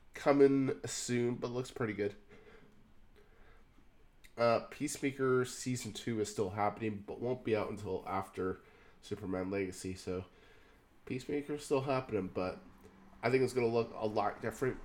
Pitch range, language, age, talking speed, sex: 105-130 Hz, English, 20-39, 140 wpm, male